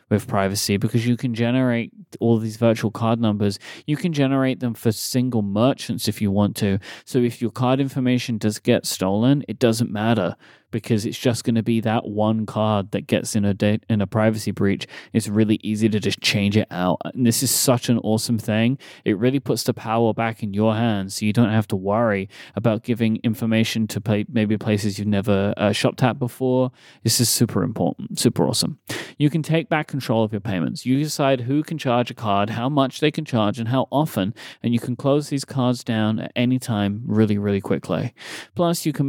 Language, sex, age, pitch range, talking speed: English, male, 20-39, 105-130 Hz, 210 wpm